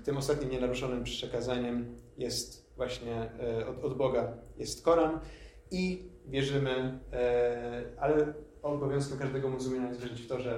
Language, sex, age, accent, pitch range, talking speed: Polish, male, 30-49, native, 120-140 Hz, 135 wpm